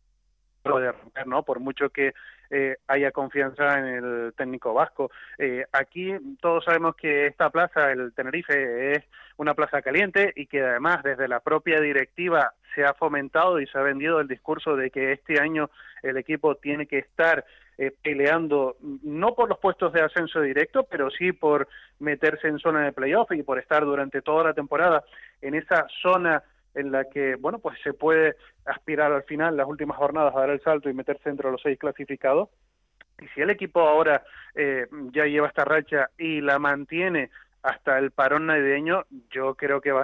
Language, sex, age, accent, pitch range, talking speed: Spanish, male, 20-39, Argentinian, 135-160 Hz, 185 wpm